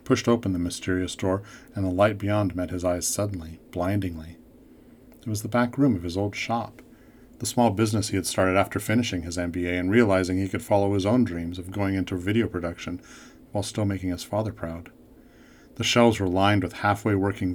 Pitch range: 90-110 Hz